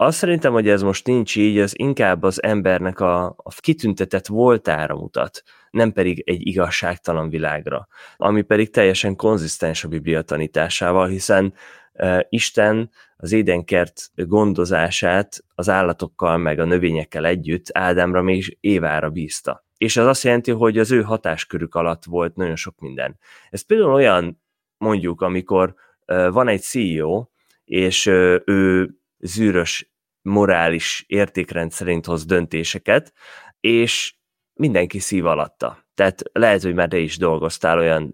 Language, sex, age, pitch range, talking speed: Hungarian, male, 20-39, 85-105 Hz, 135 wpm